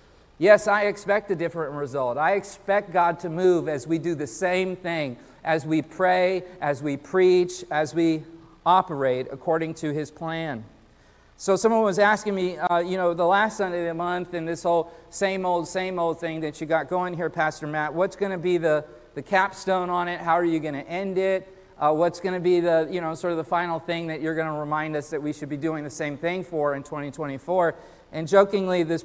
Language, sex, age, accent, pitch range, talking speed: English, male, 40-59, American, 155-185 Hz, 225 wpm